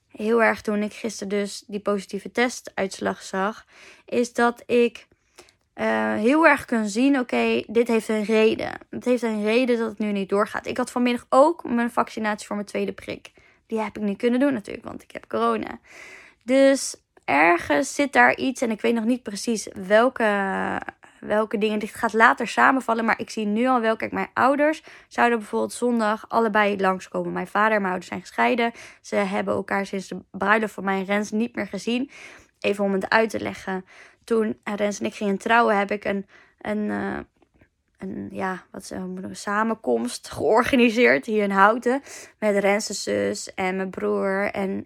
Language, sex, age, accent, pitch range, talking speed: Dutch, female, 20-39, Dutch, 200-235 Hz, 185 wpm